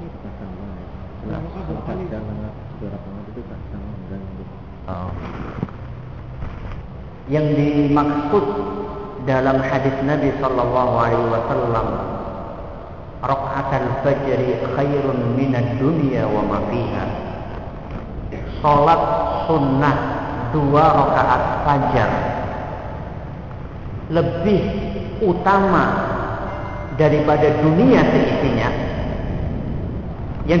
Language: Malay